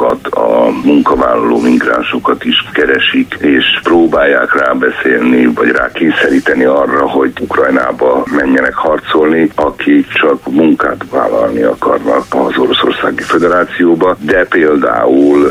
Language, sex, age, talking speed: Hungarian, male, 60-79, 95 wpm